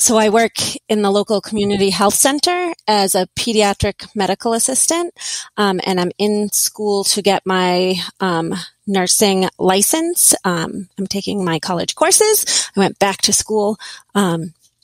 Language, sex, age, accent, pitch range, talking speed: English, female, 30-49, American, 195-235 Hz, 150 wpm